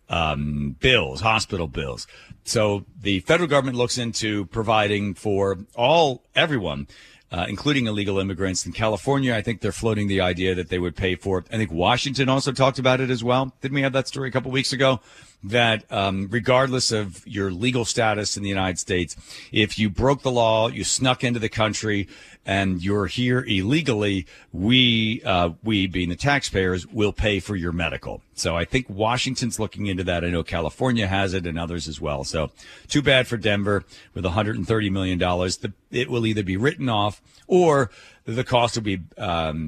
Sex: male